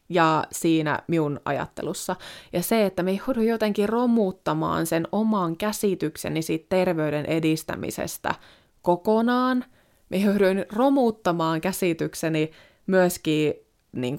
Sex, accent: female, native